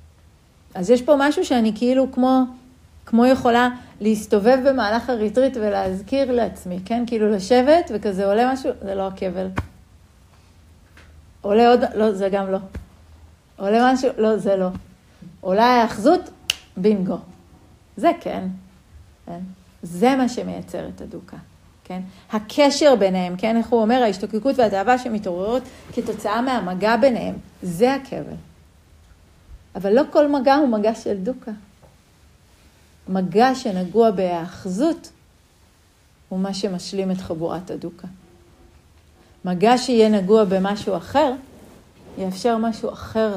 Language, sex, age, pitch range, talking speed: Hebrew, female, 50-69, 180-245 Hz, 120 wpm